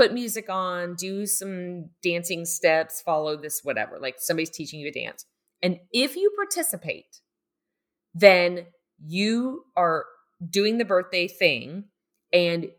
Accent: American